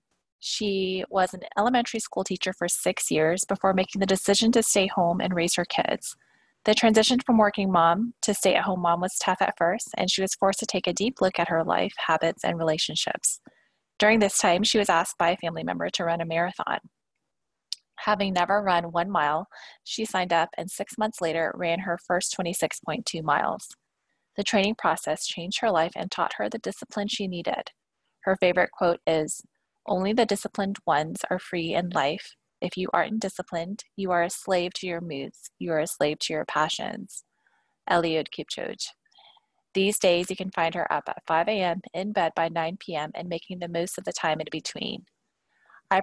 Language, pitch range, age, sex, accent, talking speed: English, 170-200 Hz, 20-39, female, American, 195 wpm